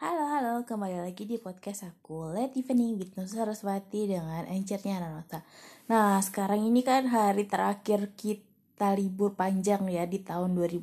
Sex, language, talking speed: female, Indonesian, 150 wpm